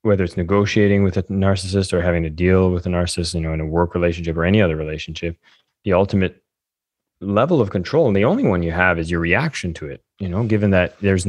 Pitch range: 85-100 Hz